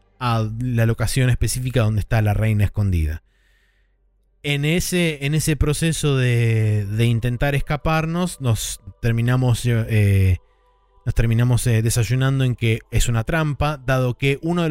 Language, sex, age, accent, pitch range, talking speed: Spanish, male, 20-39, Argentinian, 115-145 Hz, 140 wpm